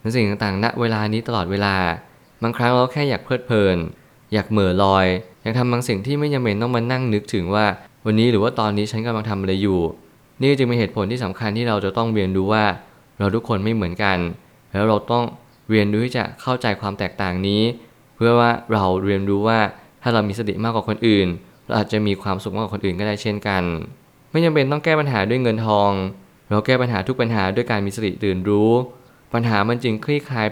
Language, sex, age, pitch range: Thai, male, 20-39, 100-120 Hz